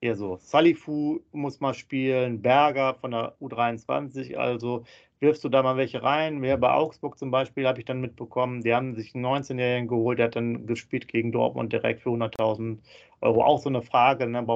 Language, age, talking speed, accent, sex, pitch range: German, 40-59, 205 wpm, German, male, 115-130 Hz